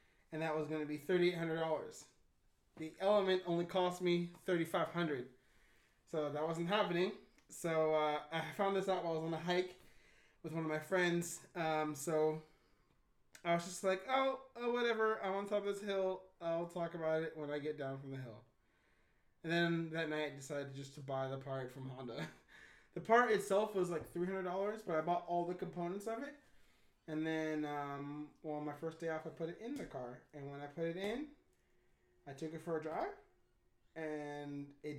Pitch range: 150-185 Hz